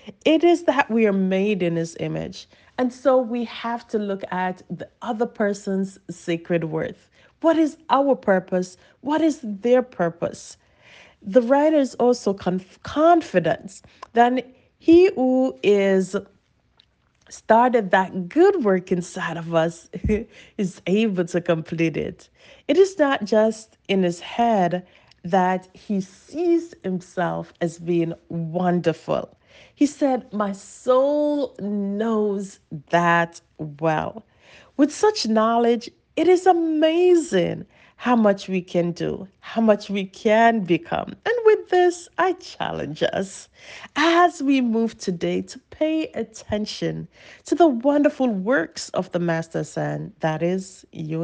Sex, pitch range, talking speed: female, 175-275 Hz, 130 wpm